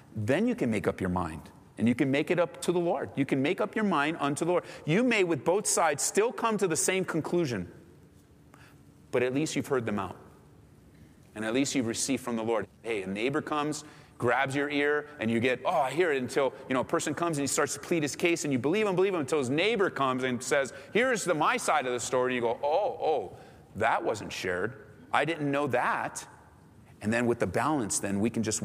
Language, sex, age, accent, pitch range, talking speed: English, male, 30-49, American, 110-150 Hz, 245 wpm